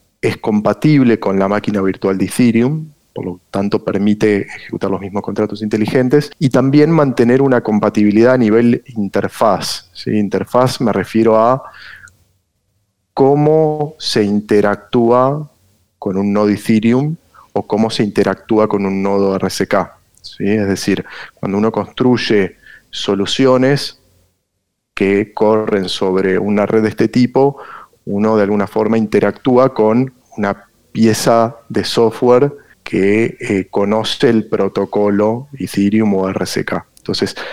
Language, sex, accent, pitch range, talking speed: Spanish, male, Argentinian, 100-120 Hz, 125 wpm